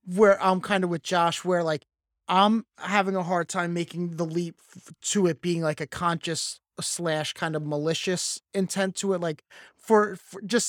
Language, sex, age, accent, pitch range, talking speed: English, male, 20-39, American, 150-190 Hz, 190 wpm